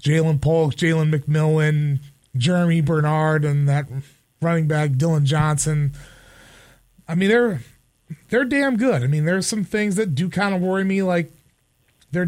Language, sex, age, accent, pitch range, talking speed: English, male, 30-49, American, 145-195 Hz, 150 wpm